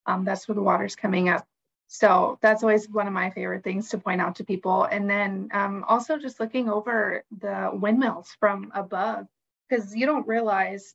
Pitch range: 195-220 Hz